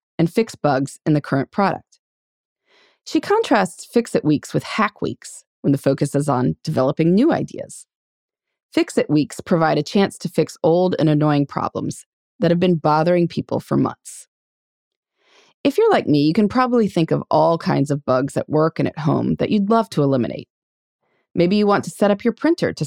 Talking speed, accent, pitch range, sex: 190 wpm, American, 145-205 Hz, female